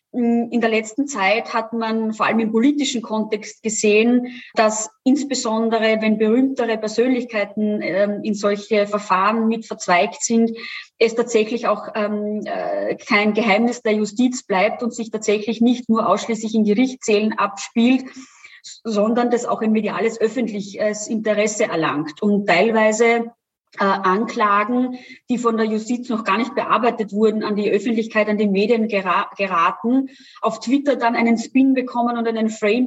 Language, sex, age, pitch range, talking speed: German, female, 20-39, 215-240 Hz, 135 wpm